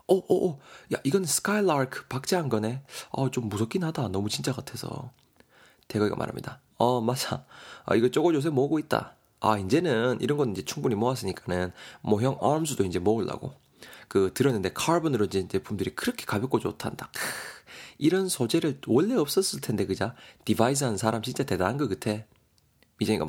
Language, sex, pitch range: Korean, male, 105-155 Hz